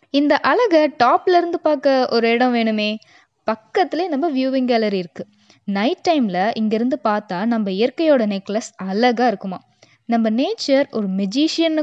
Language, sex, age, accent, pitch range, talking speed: Tamil, female, 20-39, native, 205-275 Hz, 135 wpm